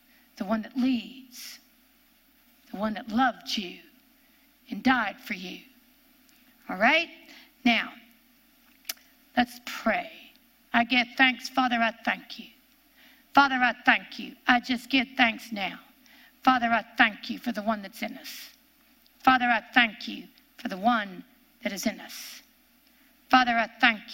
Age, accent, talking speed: 50-69, American, 145 wpm